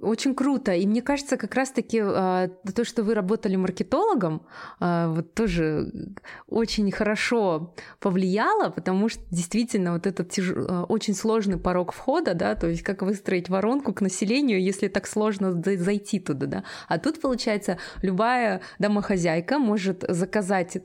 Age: 20-39